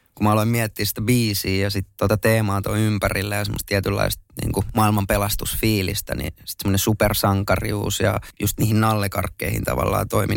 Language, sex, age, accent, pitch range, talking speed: Finnish, male, 20-39, native, 100-110 Hz, 150 wpm